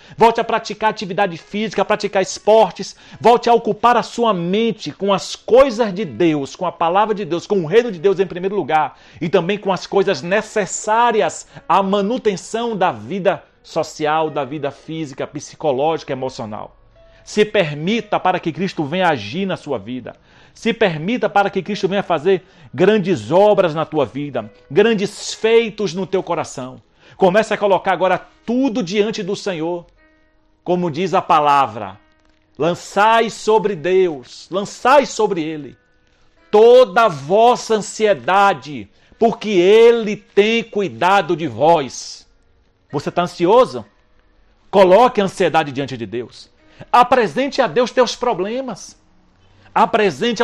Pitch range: 165-220 Hz